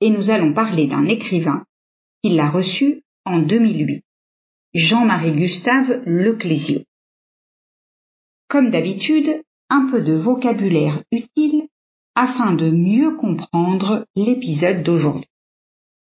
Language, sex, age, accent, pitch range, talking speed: French, female, 50-69, French, 170-245 Hz, 100 wpm